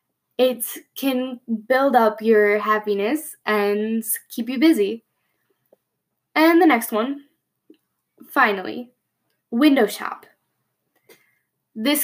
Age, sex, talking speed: 10-29, female, 90 wpm